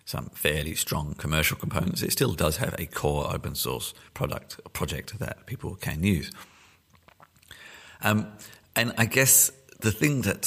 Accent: British